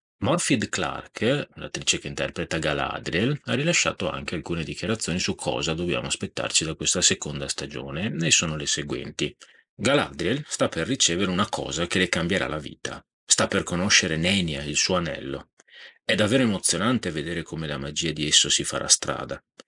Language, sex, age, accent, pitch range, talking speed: Italian, male, 30-49, native, 80-115 Hz, 160 wpm